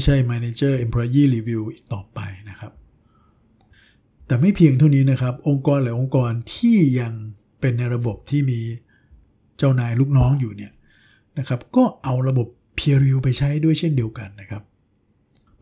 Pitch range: 110-135 Hz